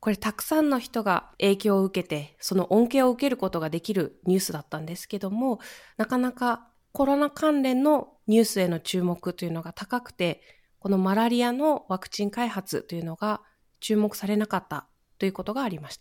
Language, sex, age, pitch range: Japanese, female, 20-39, 185-245 Hz